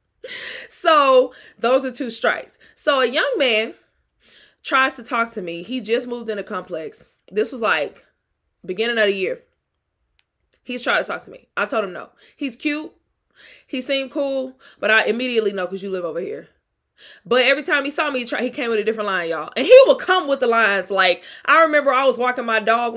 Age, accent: 20-39, American